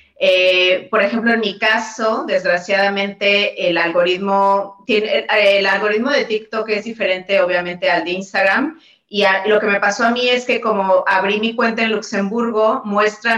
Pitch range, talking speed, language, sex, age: 185-225 Hz, 170 wpm, Spanish, female, 30-49